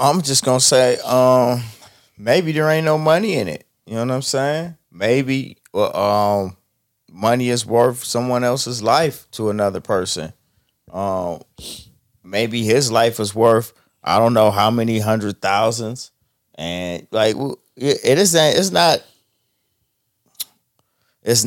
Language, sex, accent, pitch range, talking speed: English, male, American, 105-135 Hz, 140 wpm